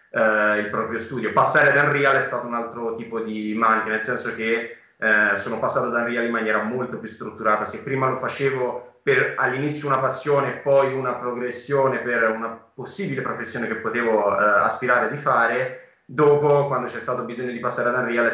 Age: 20-39